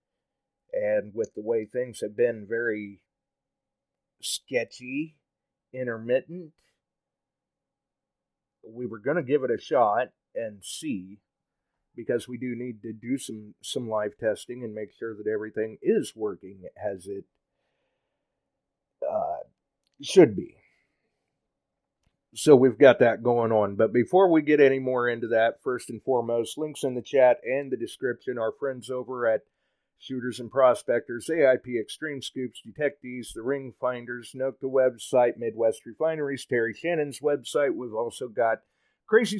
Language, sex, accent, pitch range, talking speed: English, male, American, 115-155 Hz, 140 wpm